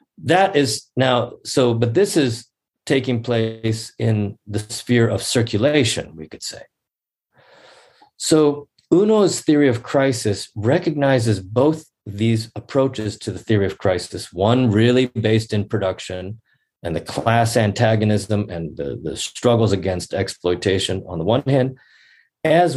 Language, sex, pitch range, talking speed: English, male, 105-130 Hz, 135 wpm